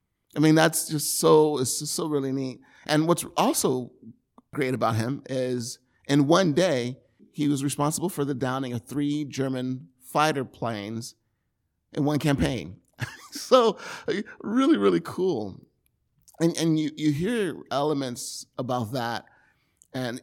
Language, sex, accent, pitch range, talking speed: English, male, American, 115-140 Hz, 140 wpm